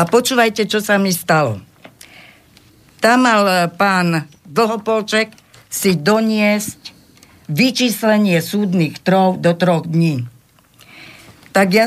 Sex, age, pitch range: female, 50-69, 170-210 Hz